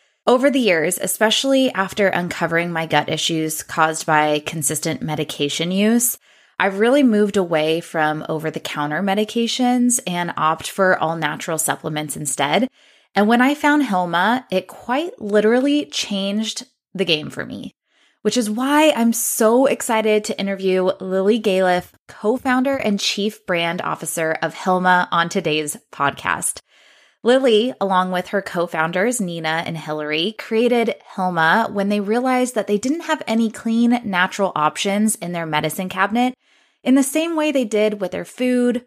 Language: English